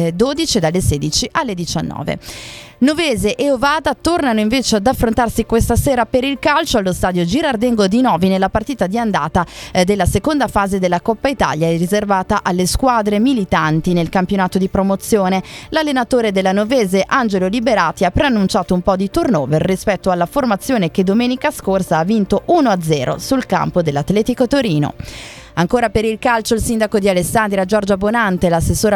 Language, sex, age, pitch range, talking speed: Italian, female, 30-49, 185-240 Hz, 160 wpm